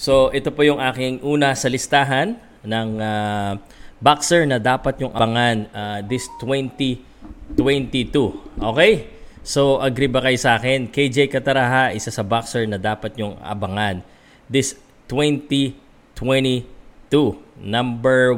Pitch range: 115-135 Hz